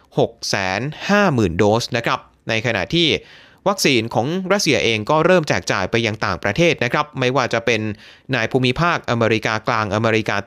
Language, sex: Thai, male